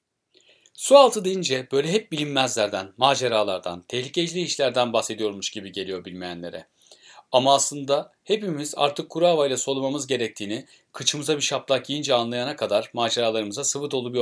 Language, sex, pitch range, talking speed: Turkish, male, 110-145 Hz, 125 wpm